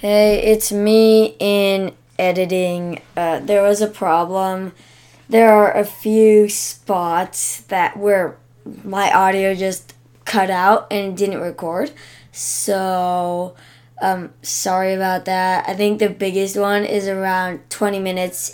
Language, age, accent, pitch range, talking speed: English, 20-39, American, 160-205 Hz, 125 wpm